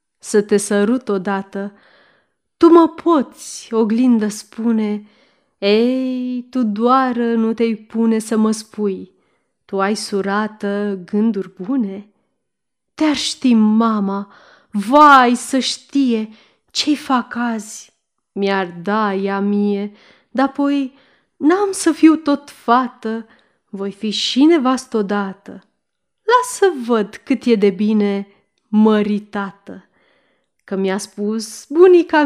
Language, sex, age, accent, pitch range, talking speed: Romanian, female, 20-39, native, 210-270 Hz, 110 wpm